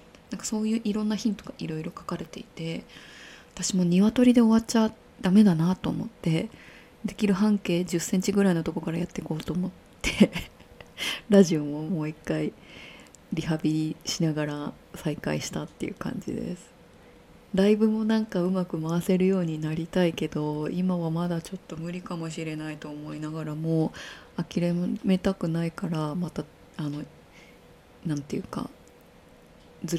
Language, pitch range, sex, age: Japanese, 155-200 Hz, female, 20-39